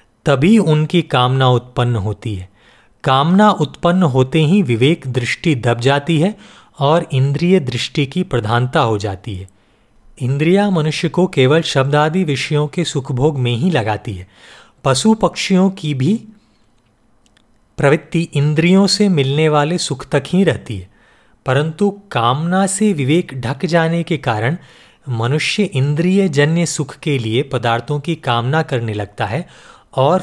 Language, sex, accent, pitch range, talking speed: Hindi, male, native, 120-170 Hz, 140 wpm